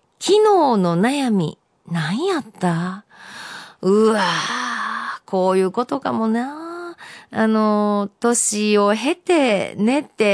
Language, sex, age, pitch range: Japanese, female, 40-59, 185-250 Hz